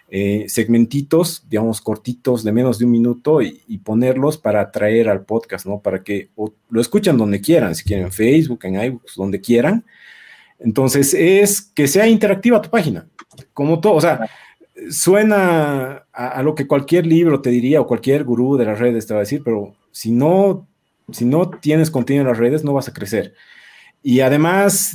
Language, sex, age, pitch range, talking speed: Spanish, male, 40-59, 115-160 Hz, 185 wpm